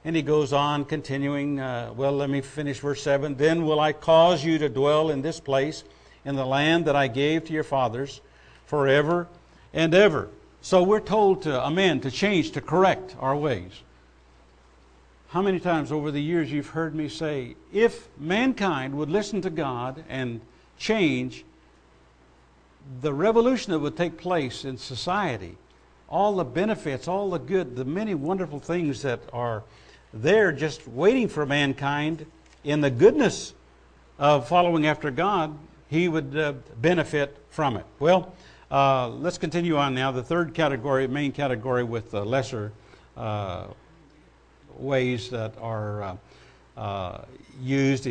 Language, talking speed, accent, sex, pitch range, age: English, 150 wpm, American, male, 110-160 Hz, 60-79